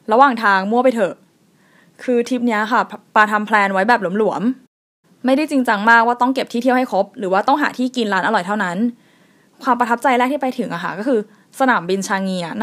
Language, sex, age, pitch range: Thai, female, 20-39, 200-255 Hz